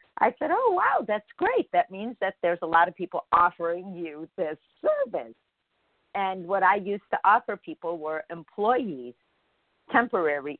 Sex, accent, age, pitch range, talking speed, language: female, American, 50-69, 150-205 Hz, 160 wpm, English